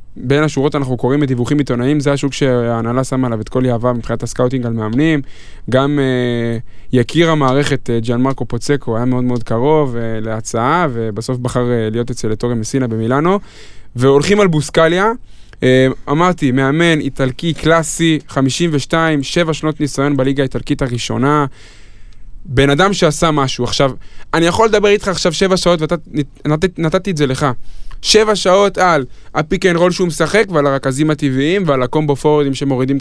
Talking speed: 155 wpm